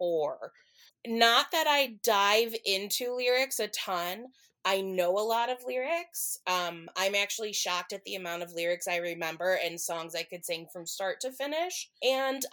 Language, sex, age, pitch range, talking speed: English, female, 20-39, 180-230 Hz, 170 wpm